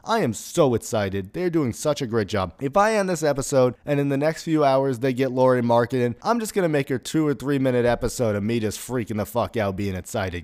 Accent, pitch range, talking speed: American, 115-150 Hz, 255 wpm